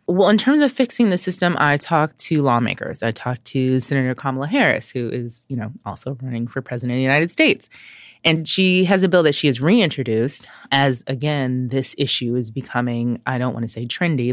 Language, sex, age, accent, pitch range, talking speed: English, female, 20-39, American, 125-160 Hz, 210 wpm